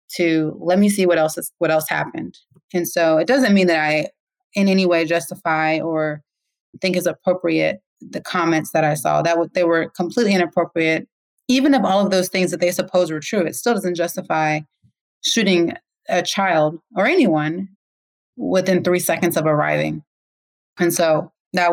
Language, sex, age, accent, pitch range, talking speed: English, female, 30-49, American, 160-180 Hz, 175 wpm